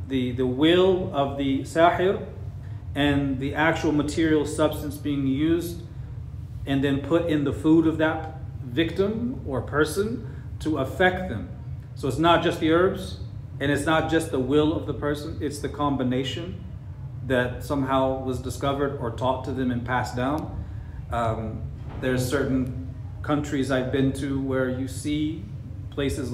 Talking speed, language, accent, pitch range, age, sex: 155 wpm, English, American, 115-140 Hz, 40-59, male